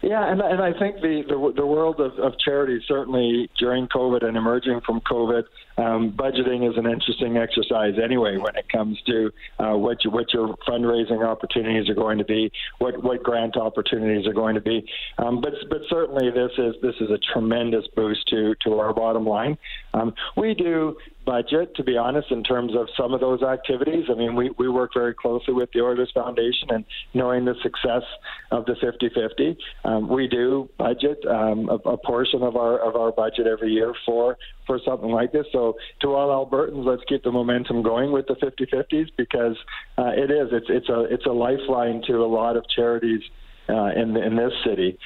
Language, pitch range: English, 115-135 Hz